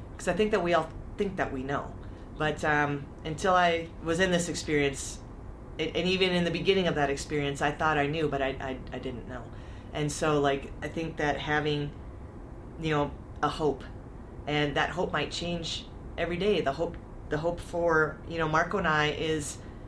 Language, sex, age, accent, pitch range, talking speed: English, female, 30-49, American, 145-170 Hz, 195 wpm